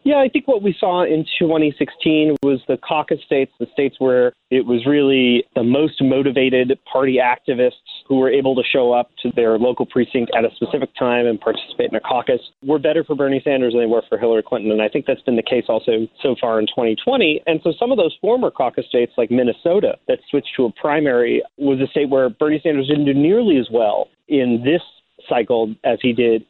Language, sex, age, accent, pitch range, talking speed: English, male, 30-49, American, 120-150 Hz, 220 wpm